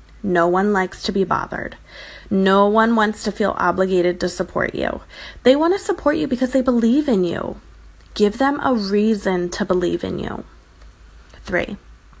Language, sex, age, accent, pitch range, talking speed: English, female, 20-39, American, 175-240 Hz, 165 wpm